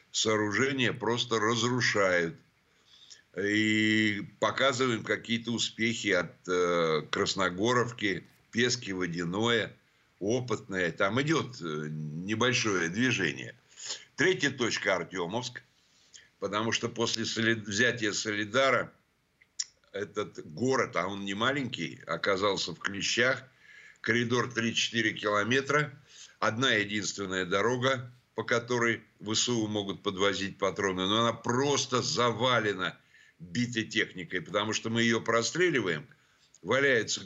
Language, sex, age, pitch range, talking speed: Russian, male, 60-79, 105-125 Hz, 90 wpm